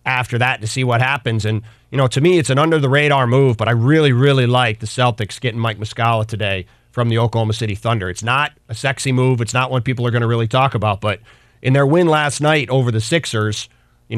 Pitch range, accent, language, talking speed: 115-140 Hz, American, English, 235 wpm